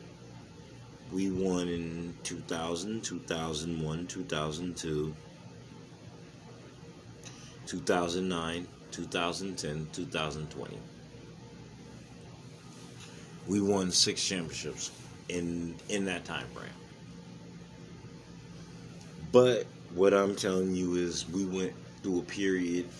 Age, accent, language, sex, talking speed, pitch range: 30-49, American, English, male, 80 wpm, 85-95 Hz